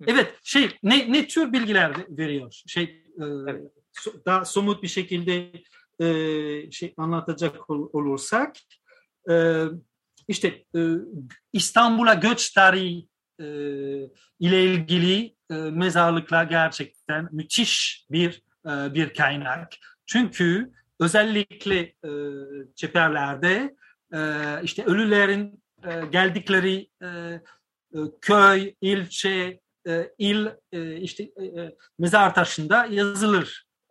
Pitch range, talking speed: 155-195 Hz, 70 wpm